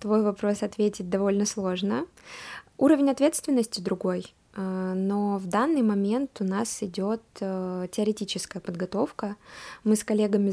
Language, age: Russian, 20-39